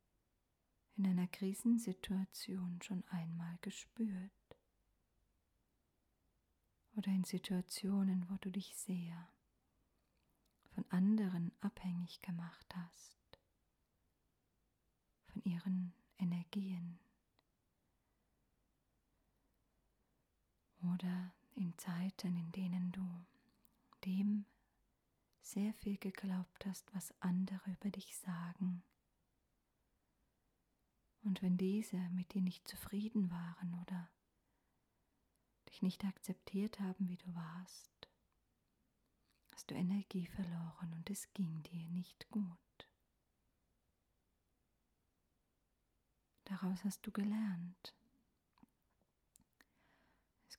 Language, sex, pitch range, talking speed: German, female, 175-195 Hz, 80 wpm